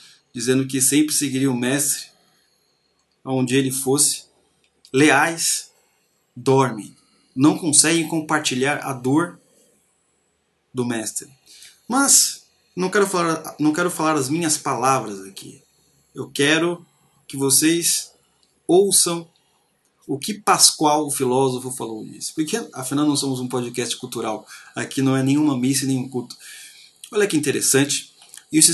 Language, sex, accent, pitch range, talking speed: Portuguese, male, Brazilian, 125-155 Hz, 125 wpm